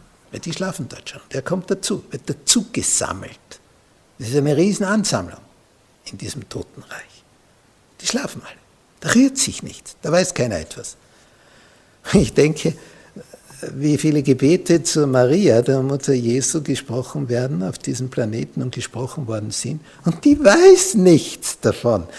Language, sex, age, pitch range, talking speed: German, male, 60-79, 120-160 Hz, 145 wpm